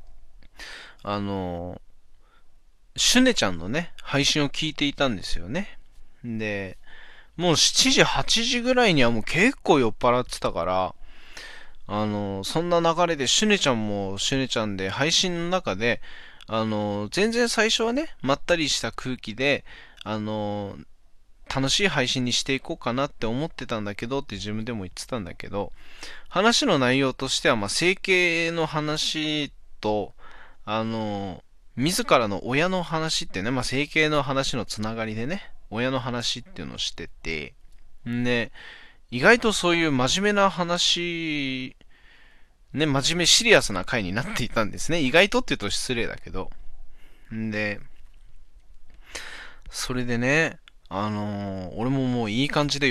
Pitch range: 105-165 Hz